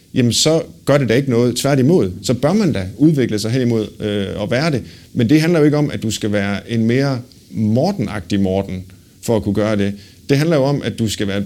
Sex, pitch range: male, 105-130 Hz